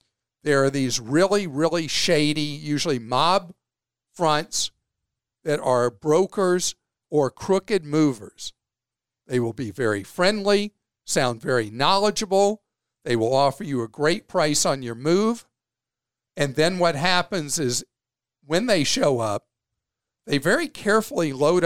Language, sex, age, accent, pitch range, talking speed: English, male, 50-69, American, 125-175 Hz, 125 wpm